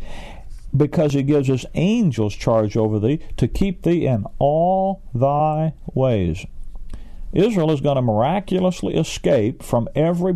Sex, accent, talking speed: male, American, 135 wpm